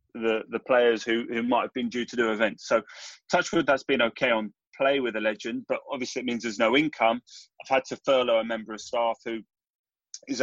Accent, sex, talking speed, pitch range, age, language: British, male, 230 wpm, 115-150 Hz, 30-49, English